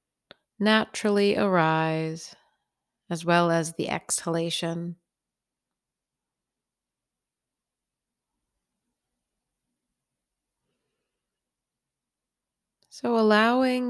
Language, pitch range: English, 160-180 Hz